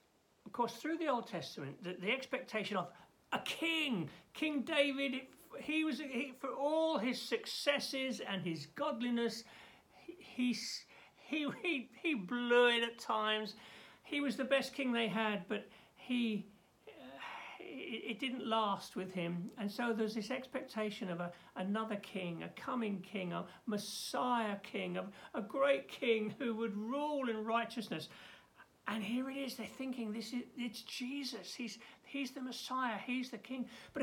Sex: male